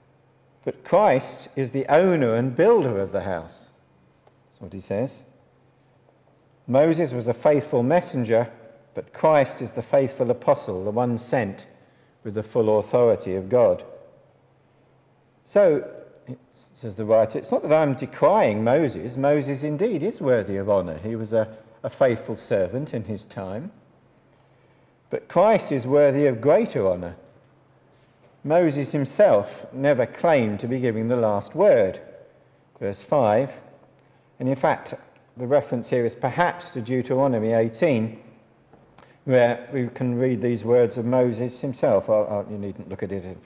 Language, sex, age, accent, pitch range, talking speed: English, male, 50-69, British, 110-135 Hz, 145 wpm